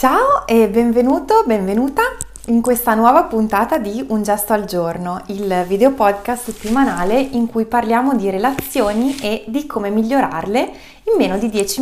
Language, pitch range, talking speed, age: Italian, 185-255 Hz, 150 wpm, 20-39